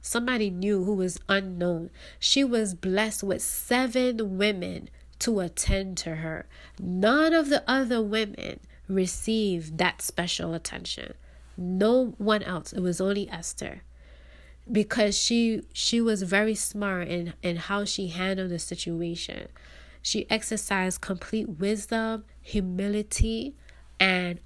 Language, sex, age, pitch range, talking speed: English, female, 20-39, 165-230 Hz, 125 wpm